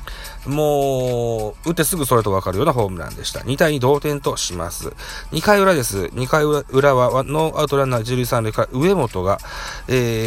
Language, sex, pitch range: Japanese, male, 105-145 Hz